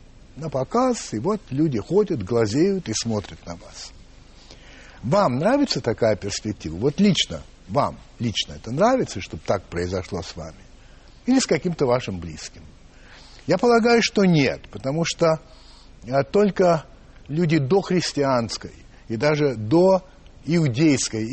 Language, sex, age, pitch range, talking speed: Russian, male, 60-79, 110-175 Hz, 125 wpm